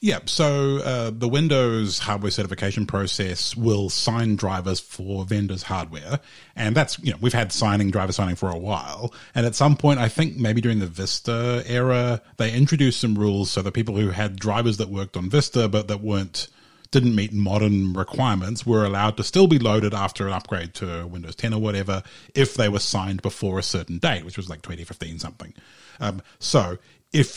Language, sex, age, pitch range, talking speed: English, male, 30-49, 95-120 Hz, 195 wpm